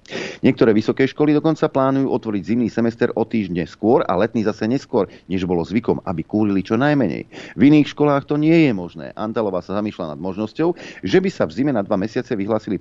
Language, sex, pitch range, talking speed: Slovak, male, 90-120 Hz, 200 wpm